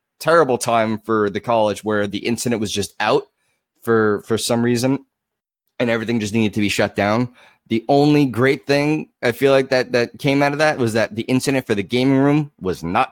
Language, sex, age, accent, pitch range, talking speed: English, male, 30-49, American, 105-125 Hz, 210 wpm